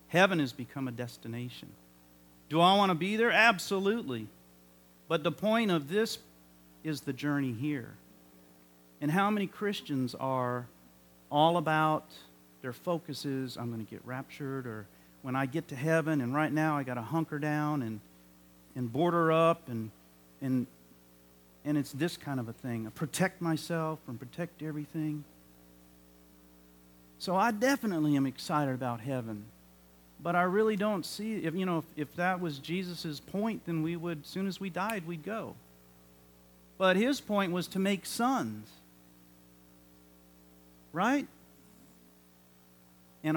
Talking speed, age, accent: 150 wpm, 50-69, American